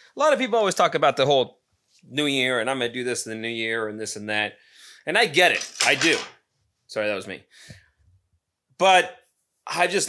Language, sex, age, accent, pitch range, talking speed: English, male, 30-49, American, 105-160 Hz, 225 wpm